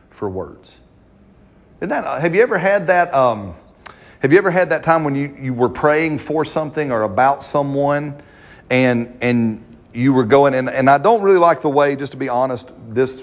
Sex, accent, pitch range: male, American, 105-140 Hz